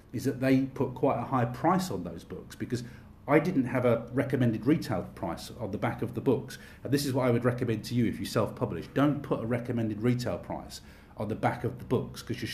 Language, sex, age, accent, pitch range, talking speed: English, male, 40-59, British, 105-130 Hz, 245 wpm